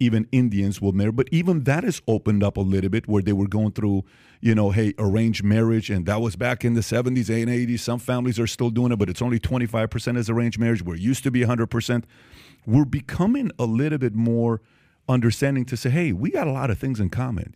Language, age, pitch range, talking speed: English, 40-59, 105-125 Hz, 235 wpm